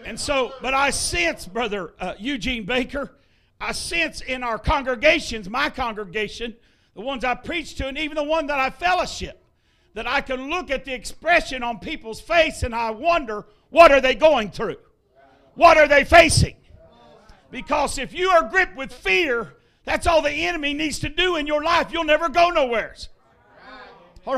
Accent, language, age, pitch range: American, English, 60-79, 260-340 Hz